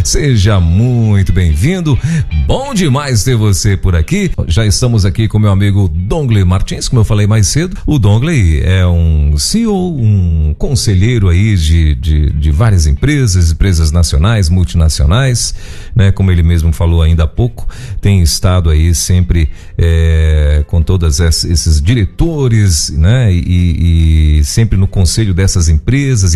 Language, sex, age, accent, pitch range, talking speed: Portuguese, male, 40-59, Brazilian, 85-125 Hz, 140 wpm